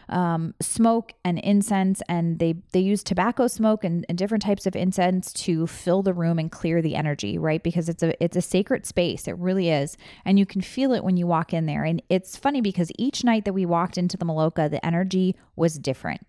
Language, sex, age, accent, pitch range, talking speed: English, female, 20-39, American, 170-205 Hz, 225 wpm